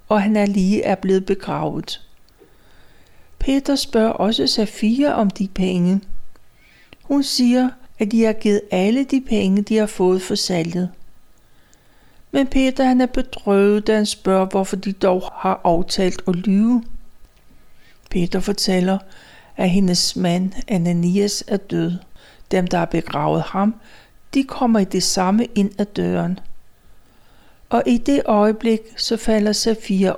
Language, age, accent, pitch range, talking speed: Danish, 60-79, native, 185-235 Hz, 140 wpm